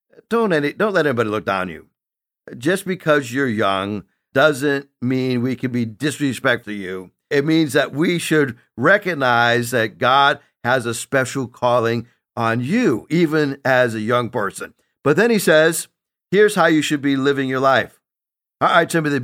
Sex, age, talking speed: male, 60-79, 170 wpm